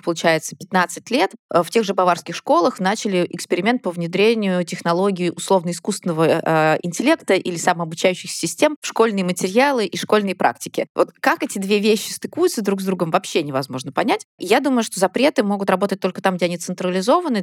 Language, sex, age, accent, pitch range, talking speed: Russian, female, 20-39, native, 165-205 Hz, 160 wpm